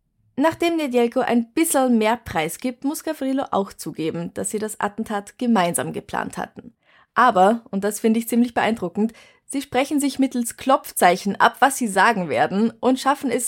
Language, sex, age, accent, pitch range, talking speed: German, female, 20-39, German, 195-250 Hz, 170 wpm